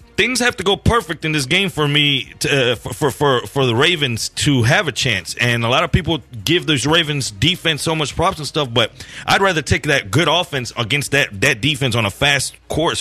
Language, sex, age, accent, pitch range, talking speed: English, male, 30-49, American, 125-165 Hz, 235 wpm